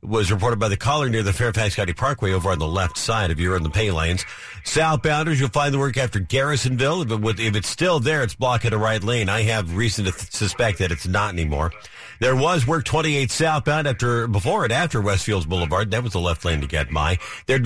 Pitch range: 105-135 Hz